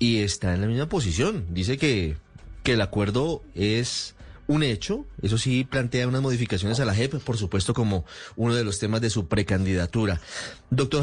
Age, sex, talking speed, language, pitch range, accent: 30-49, male, 180 wpm, Spanish, 100-130 Hz, Colombian